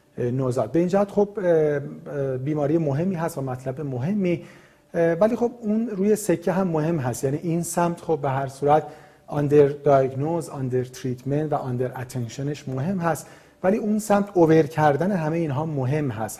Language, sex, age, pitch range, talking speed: Persian, male, 40-59, 130-165 Hz, 155 wpm